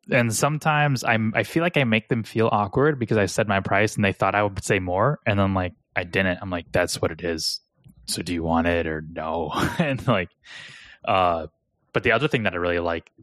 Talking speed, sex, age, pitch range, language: 235 wpm, male, 20-39, 95-110 Hz, English